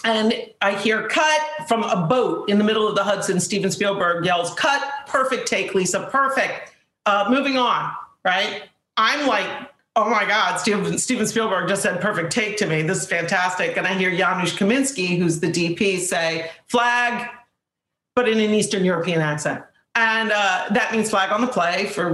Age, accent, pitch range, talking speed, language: 50-69, American, 190-245 Hz, 180 wpm, English